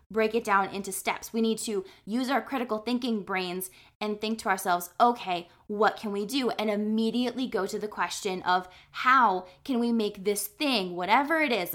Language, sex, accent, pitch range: English, female, American, 205-285 Hz